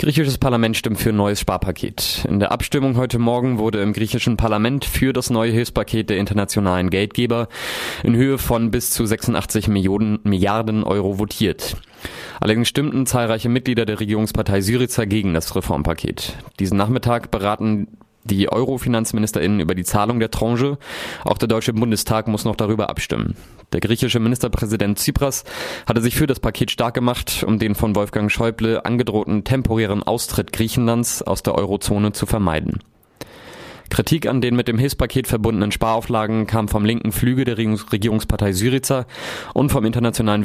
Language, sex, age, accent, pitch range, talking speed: German, male, 20-39, German, 105-120 Hz, 155 wpm